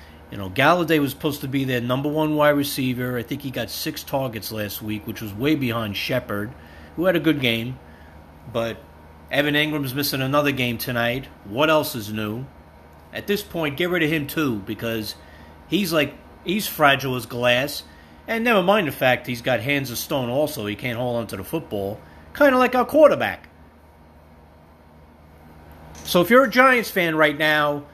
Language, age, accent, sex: English, 40-59, American, male